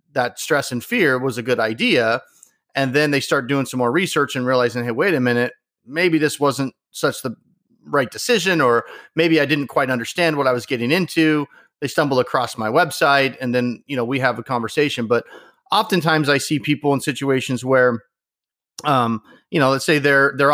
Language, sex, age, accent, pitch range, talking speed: English, male, 30-49, American, 130-160 Hz, 200 wpm